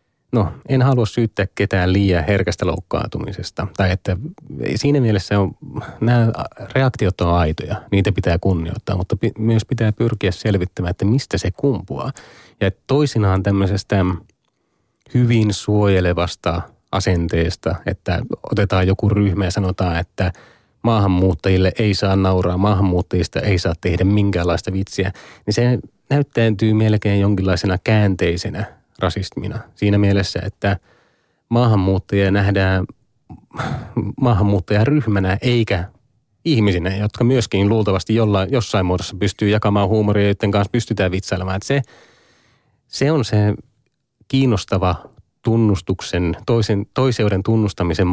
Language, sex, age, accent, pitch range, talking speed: Finnish, male, 30-49, native, 95-115 Hz, 110 wpm